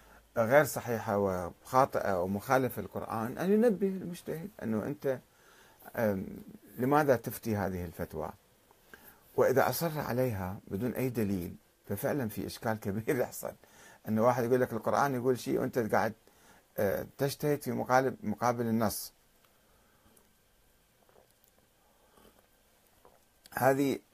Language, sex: Arabic, male